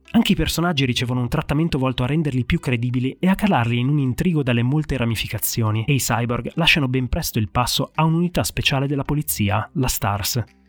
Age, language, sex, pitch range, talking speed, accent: 30-49, Italian, male, 120-155 Hz, 195 wpm, native